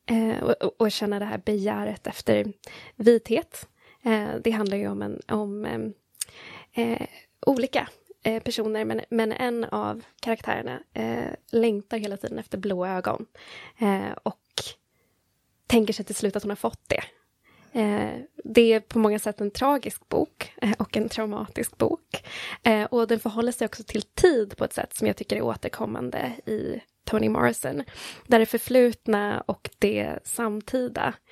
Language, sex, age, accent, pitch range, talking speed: Swedish, female, 20-39, native, 205-235 Hz, 140 wpm